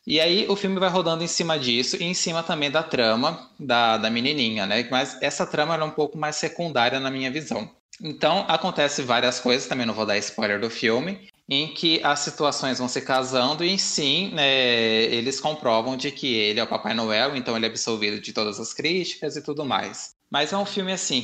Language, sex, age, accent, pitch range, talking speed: Portuguese, male, 20-39, Brazilian, 115-145 Hz, 215 wpm